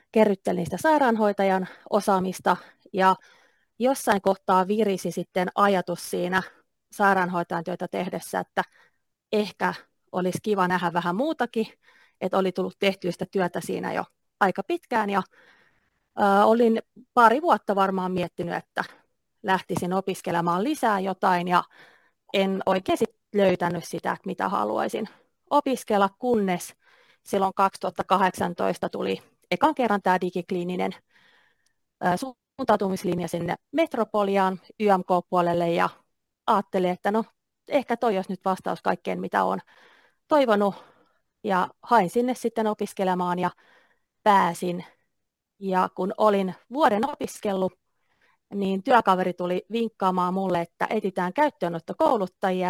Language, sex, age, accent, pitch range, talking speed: Finnish, female, 30-49, native, 180-220 Hz, 110 wpm